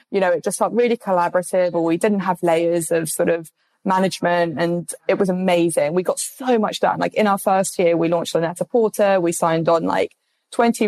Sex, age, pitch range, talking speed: female, 20-39, 165-190 Hz, 215 wpm